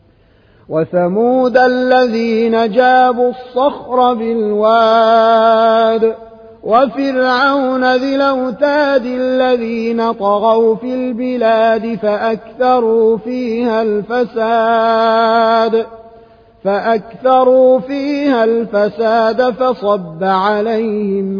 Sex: male